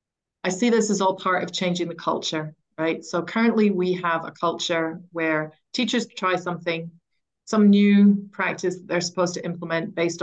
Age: 30-49